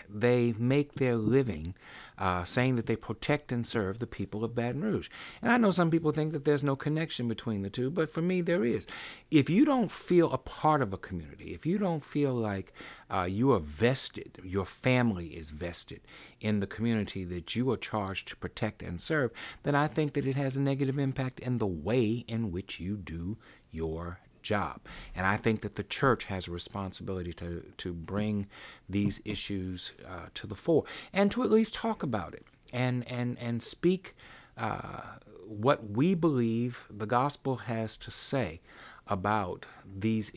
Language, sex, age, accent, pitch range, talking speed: English, male, 60-79, American, 100-130 Hz, 185 wpm